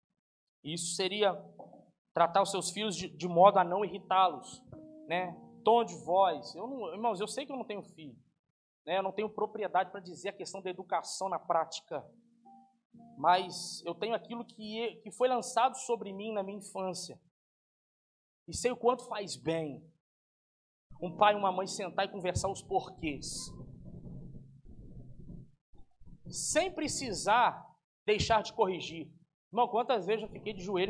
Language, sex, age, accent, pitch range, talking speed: Portuguese, male, 20-39, Brazilian, 165-230 Hz, 150 wpm